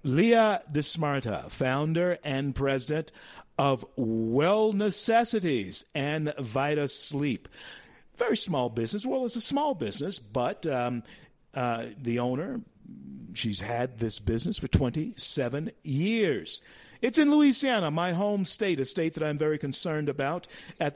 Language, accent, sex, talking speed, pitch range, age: English, American, male, 130 wpm, 125-165 Hz, 50-69